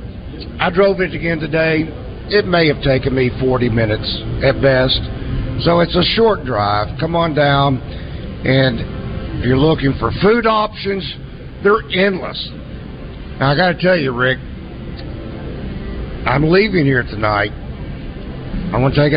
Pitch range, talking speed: 130-170 Hz, 145 wpm